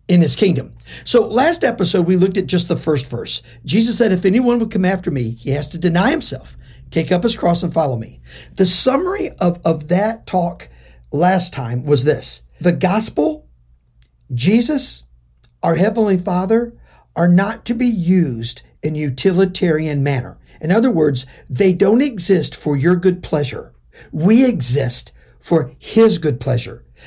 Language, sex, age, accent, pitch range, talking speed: English, male, 50-69, American, 155-235 Hz, 160 wpm